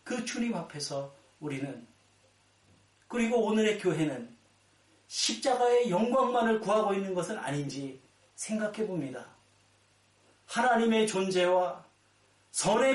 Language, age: Korean, 40-59